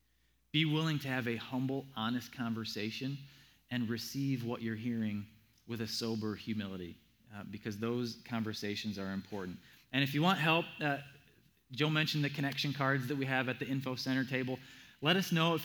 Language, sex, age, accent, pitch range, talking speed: English, male, 20-39, American, 115-145 Hz, 175 wpm